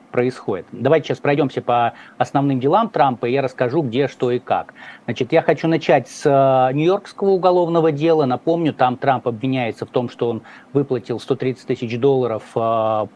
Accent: native